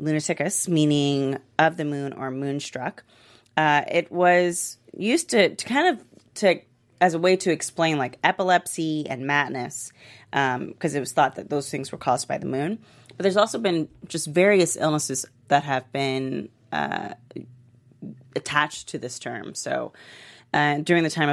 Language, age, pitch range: English, 30-49, 130-165 Hz